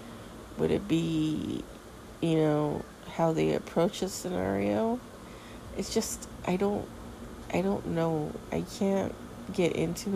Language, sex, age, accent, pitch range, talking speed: English, female, 40-59, American, 140-175 Hz, 125 wpm